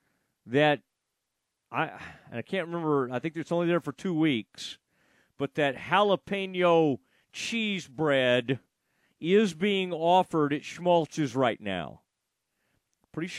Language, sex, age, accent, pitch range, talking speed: English, male, 40-59, American, 135-170 Hz, 120 wpm